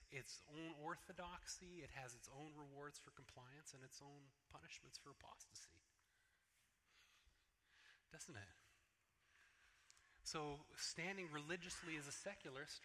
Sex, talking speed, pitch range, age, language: male, 110 wpm, 140-175 Hz, 30-49, English